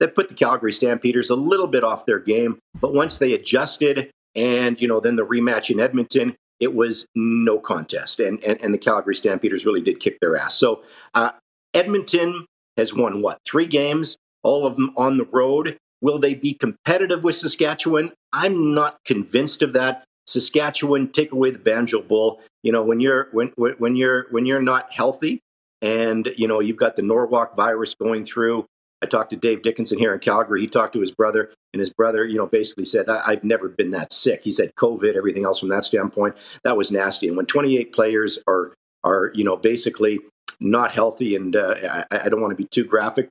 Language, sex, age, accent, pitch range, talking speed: English, male, 50-69, American, 115-160 Hz, 205 wpm